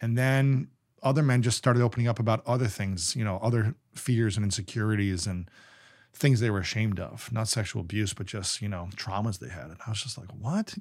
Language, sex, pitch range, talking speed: English, male, 100-120 Hz, 210 wpm